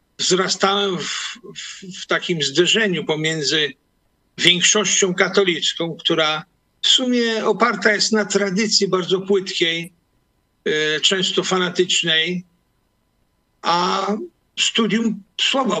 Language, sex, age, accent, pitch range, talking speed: Polish, male, 50-69, native, 170-205 Hz, 85 wpm